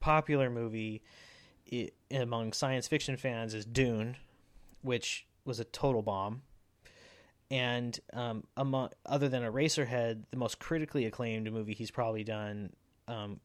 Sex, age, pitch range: male, 30-49, 105-135 Hz